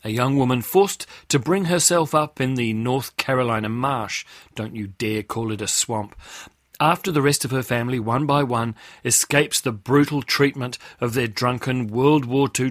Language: English